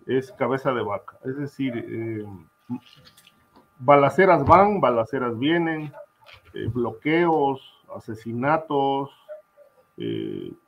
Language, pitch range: Spanish, 115-150 Hz